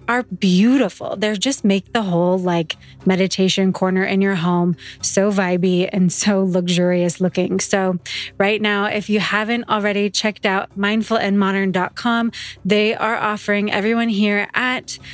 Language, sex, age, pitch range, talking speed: English, female, 20-39, 190-220 Hz, 140 wpm